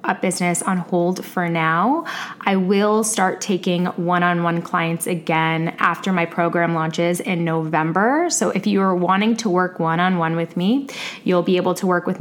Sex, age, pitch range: female, 20-39, 175-205 Hz